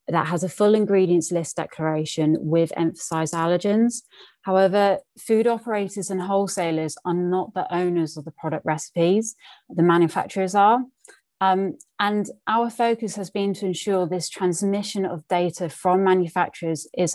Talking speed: 145 wpm